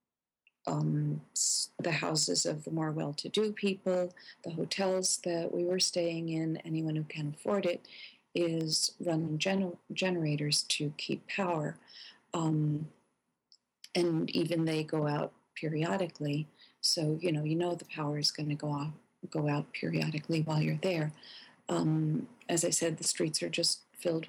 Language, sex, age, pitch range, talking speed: English, female, 40-59, 155-175 Hz, 145 wpm